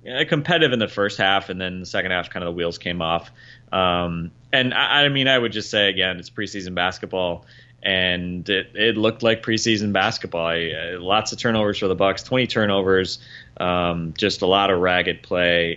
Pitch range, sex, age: 85-110 Hz, male, 30-49